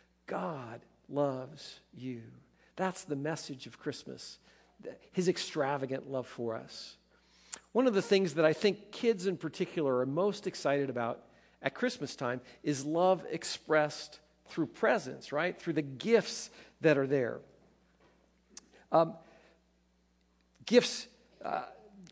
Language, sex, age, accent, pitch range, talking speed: English, male, 50-69, American, 145-190 Hz, 120 wpm